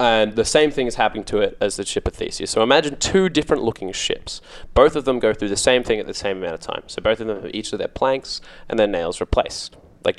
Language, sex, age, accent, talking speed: English, male, 10-29, Australian, 275 wpm